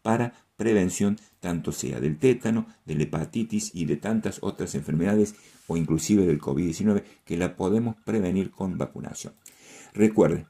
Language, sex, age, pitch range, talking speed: Spanish, male, 50-69, 85-115 Hz, 145 wpm